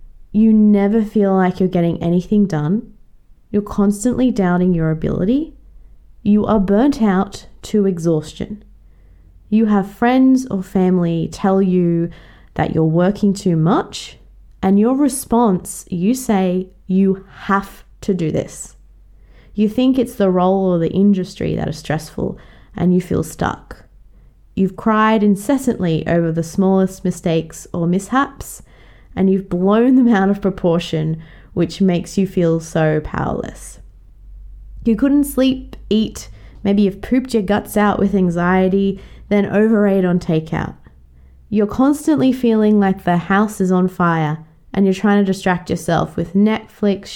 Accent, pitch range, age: Australian, 175-215 Hz, 20-39